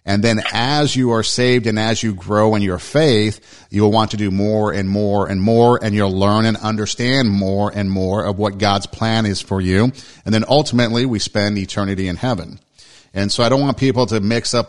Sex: male